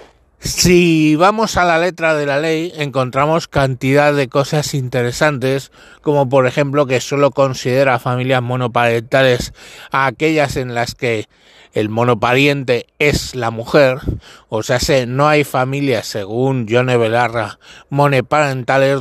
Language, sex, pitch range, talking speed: Spanish, male, 120-145 Hz, 130 wpm